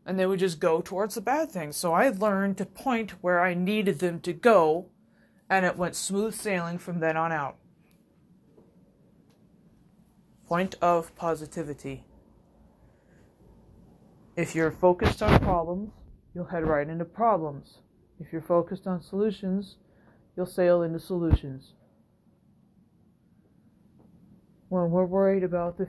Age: 30-49